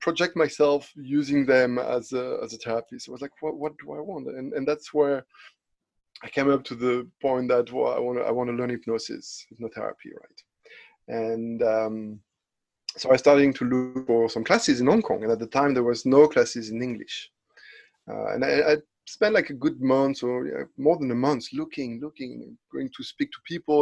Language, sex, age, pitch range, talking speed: English, male, 30-49, 125-155 Hz, 210 wpm